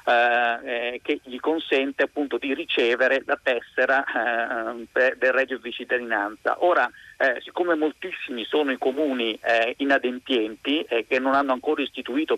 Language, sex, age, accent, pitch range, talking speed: Italian, male, 40-59, native, 125-160 Hz, 145 wpm